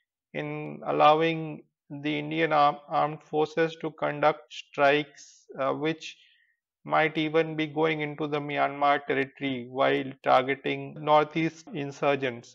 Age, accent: 30-49, Indian